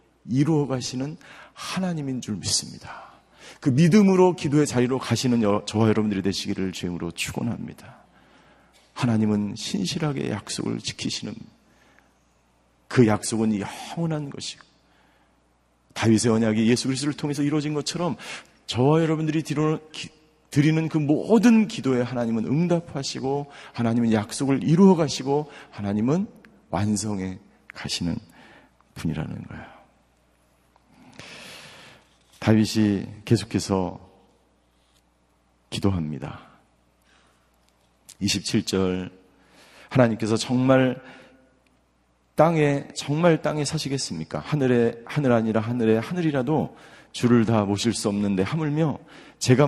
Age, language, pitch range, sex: 40-59, Korean, 100-145 Hz, male